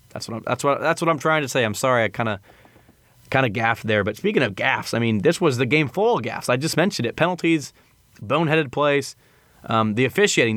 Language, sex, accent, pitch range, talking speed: English, male, American, 115-140 Hz, 235 wpm